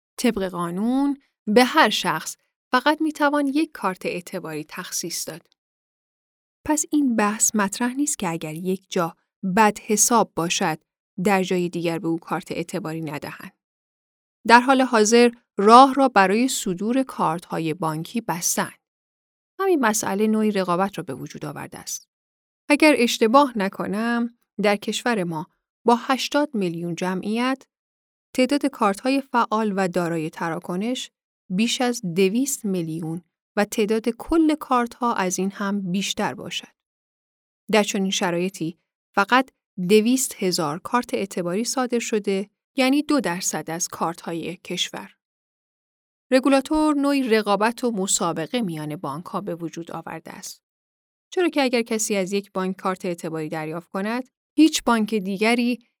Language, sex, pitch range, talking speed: Persian, female, 180-245 Hz, 135 wpm